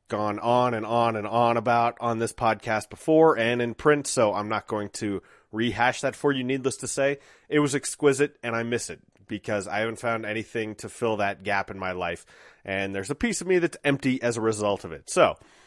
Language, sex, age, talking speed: English, male, 30-49, 225 wpm